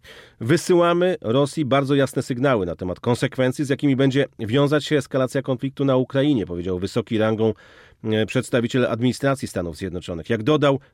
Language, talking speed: Polish, 145 wpm